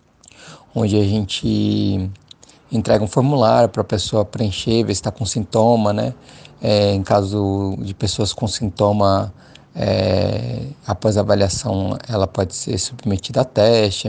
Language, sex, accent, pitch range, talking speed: Portuguese, male, Brazilian, 95-115 Hz, 140 wpm